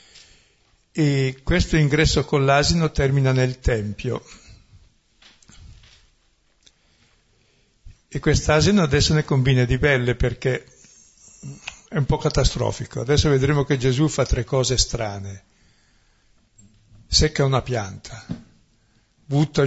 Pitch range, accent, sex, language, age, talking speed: 115-135 Hz, native, male, Italian, 60-79, 100 wpm